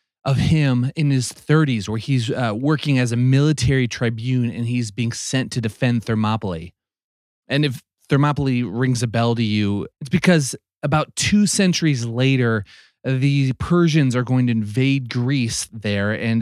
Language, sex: English, male